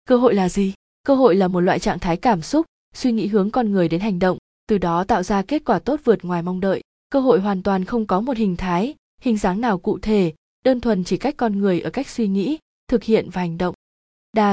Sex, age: female, 20-39